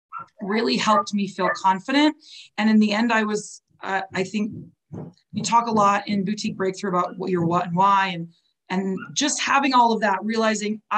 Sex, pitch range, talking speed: female, 195-260 Hz, 190 wpm